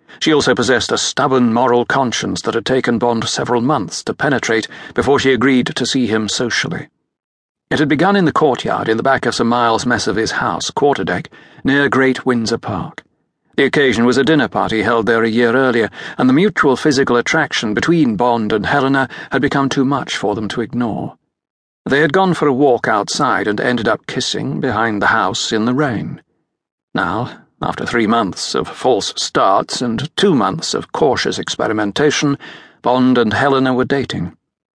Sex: male